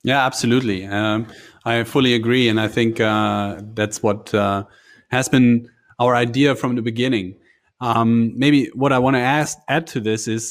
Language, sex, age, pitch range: English, male, 30-49, 100-115 Hz